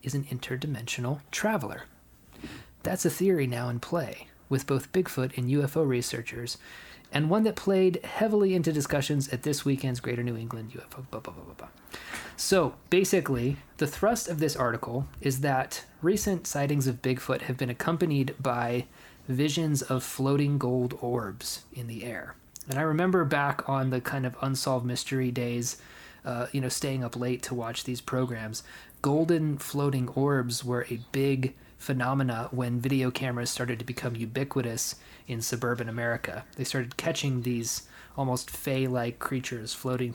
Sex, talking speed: male, 155 wpm